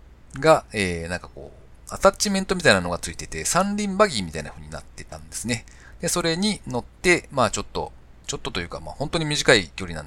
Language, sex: Japanese, male